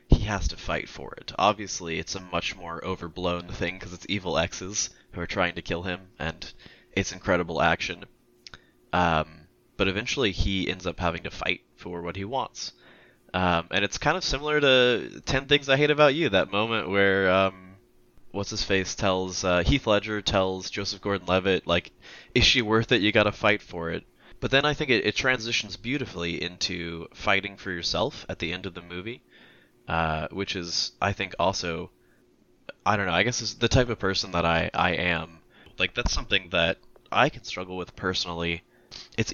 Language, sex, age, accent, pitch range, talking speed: English, male, 20-39, American, 85-105 Hz, 190 wpm